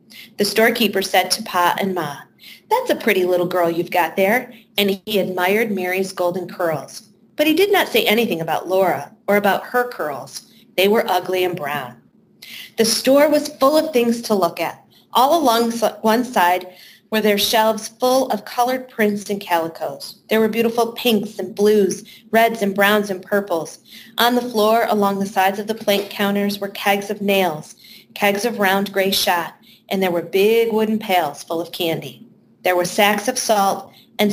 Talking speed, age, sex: 185 wpm, 30-49, female